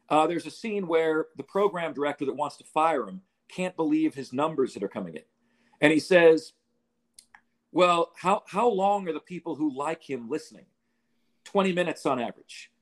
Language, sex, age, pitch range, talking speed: English, male, 50-69, 150-195 Hz, 185 wpm